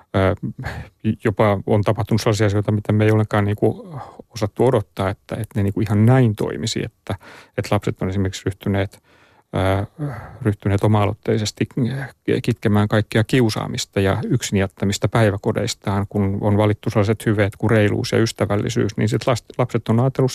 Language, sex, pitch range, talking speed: Finnish, male, 100-120 Hz, 135 wpm